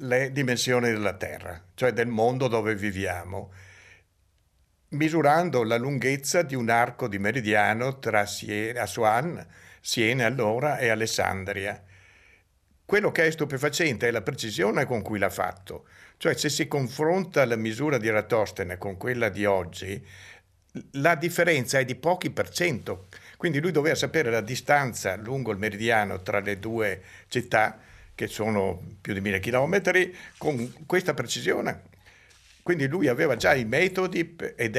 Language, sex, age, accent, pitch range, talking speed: Italian, male, 60-79, native, 100-135 Hz, 145 wpm